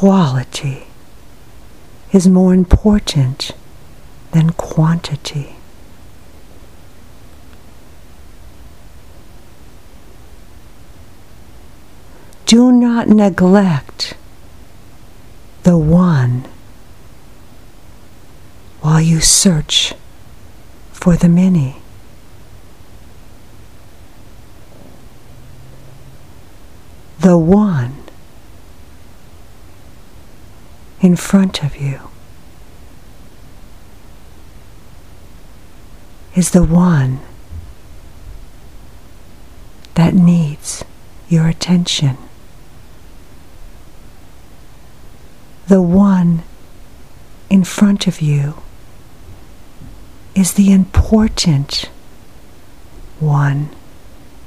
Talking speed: 45 wpm